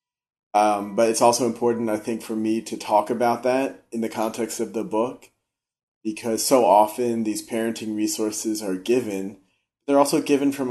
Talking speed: 175 wpm